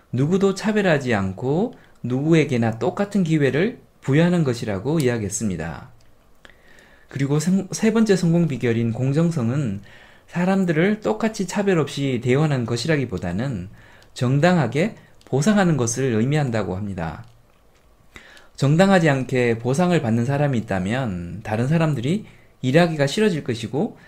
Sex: male